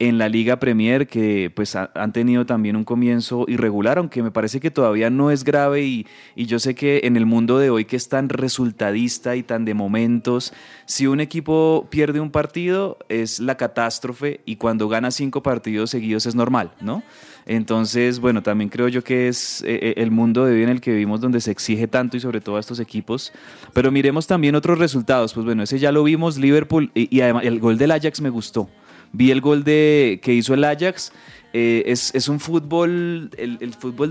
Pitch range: 115-135 Hz